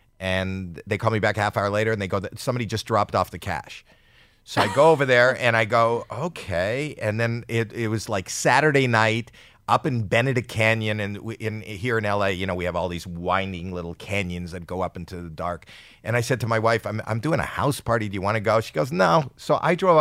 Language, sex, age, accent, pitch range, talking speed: English, male, 50-69, American, 100-130 Hz, 250 wpm